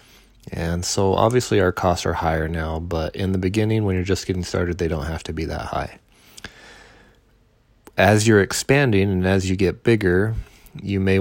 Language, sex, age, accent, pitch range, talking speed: English, male, 30-49, American, 90-100 Hz, 180 wpm